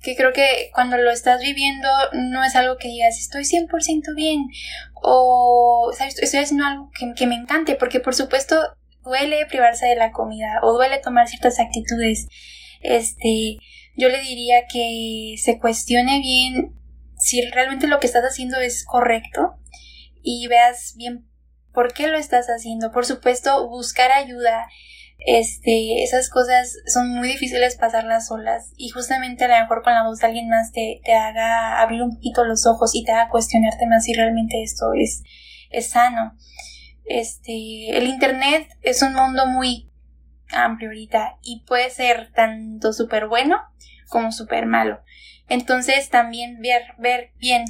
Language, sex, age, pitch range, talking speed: Spanish, female, 10-29, 230-255 Hz, 160 wpm